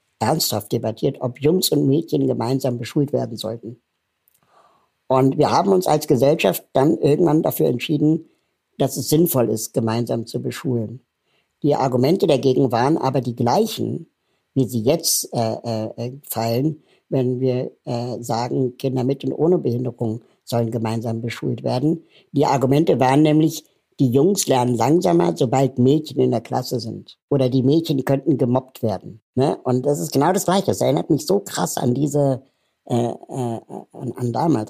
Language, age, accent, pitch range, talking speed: German, 60-79, German, 120-140 Hz, 155 wpm